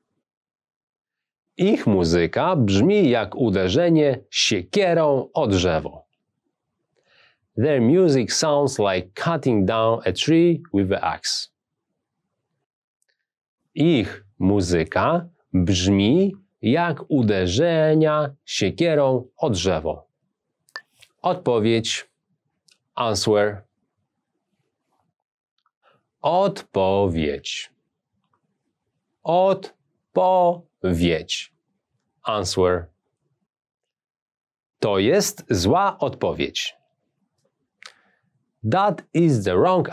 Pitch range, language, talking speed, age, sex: 100-160 Hz, English, 60 wpm, 40-59, male